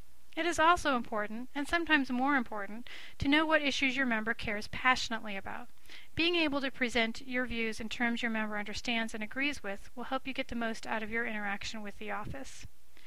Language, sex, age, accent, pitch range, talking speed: English, female, 40-59, American, 220-265 Hz, 200 wpm